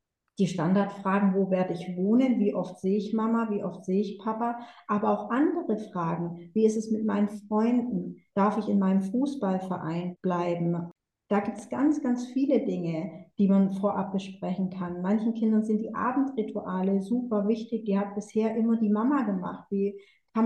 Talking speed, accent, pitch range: 175 wpm, German, 190-225 Hz